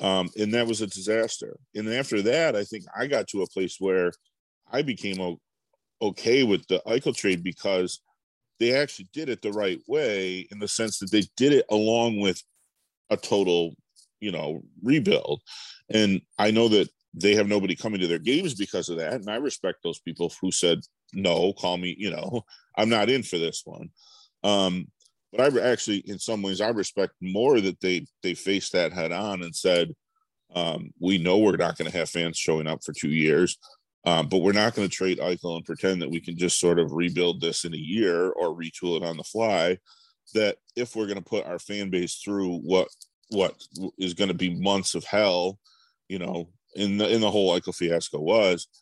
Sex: male